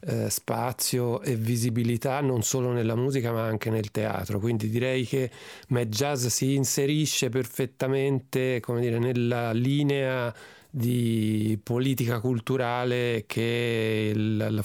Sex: male